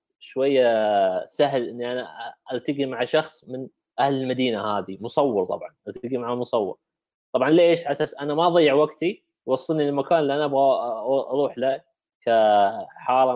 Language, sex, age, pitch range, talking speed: Arabic, male, 20-39, 130-155 Hz, 145 wpm